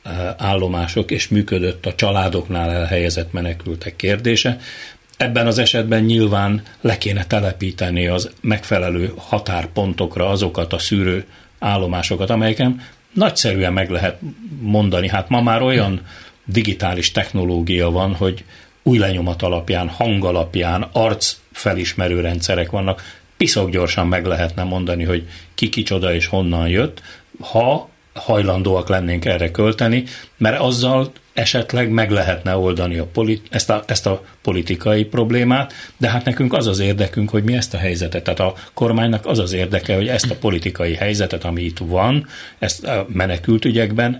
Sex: male